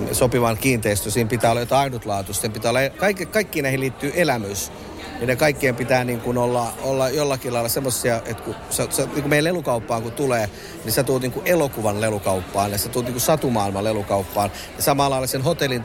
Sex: male